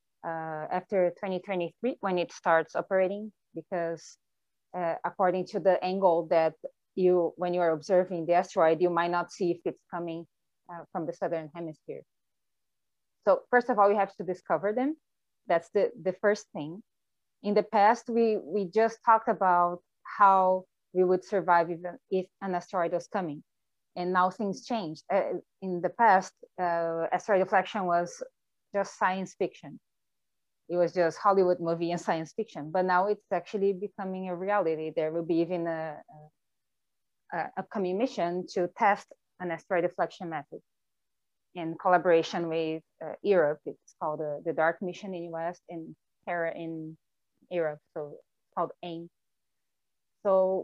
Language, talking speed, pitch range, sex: English, 155 wpm, 170-195 Hz, female